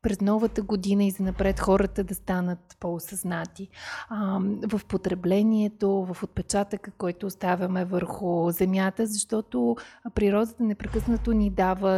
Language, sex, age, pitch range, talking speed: Bulgarian, female, 30-49, 185-215 Hz, 120 wpm